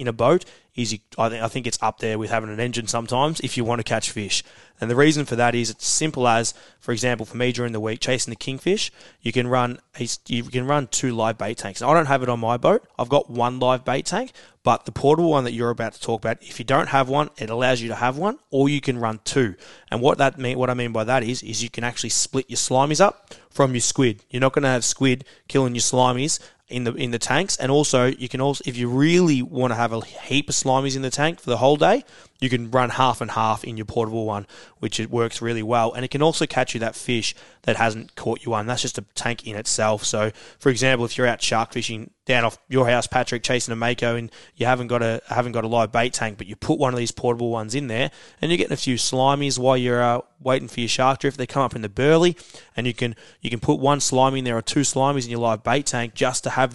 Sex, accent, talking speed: male, Australian, 275 wpm